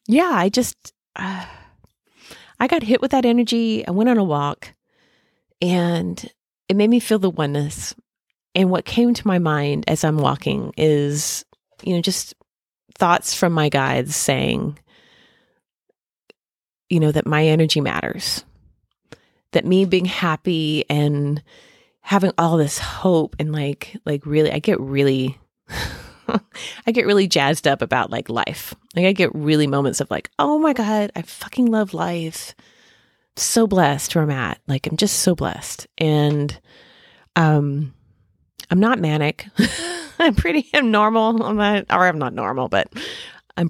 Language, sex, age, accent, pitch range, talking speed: English, female, 30-49, American, 150-205 Hz, 150 wpm